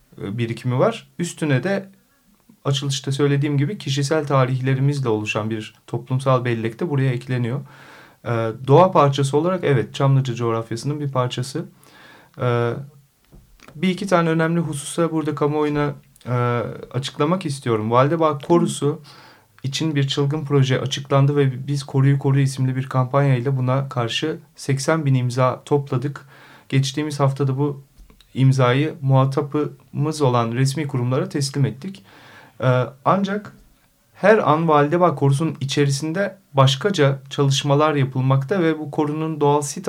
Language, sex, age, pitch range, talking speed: Turkish, male, 40-59, 125-150 Hz, 120 wpm